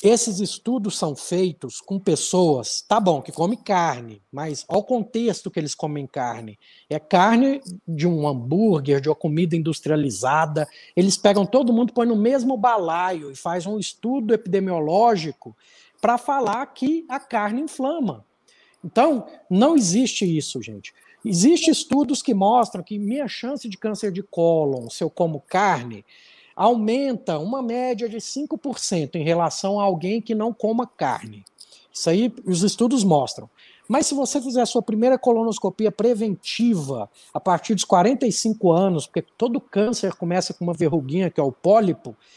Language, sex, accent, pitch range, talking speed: Portuguese, male, Brazilian, 165-240 Hz, 155 wpm